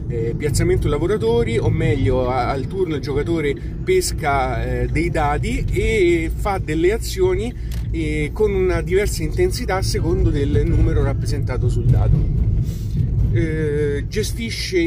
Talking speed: 120 wpm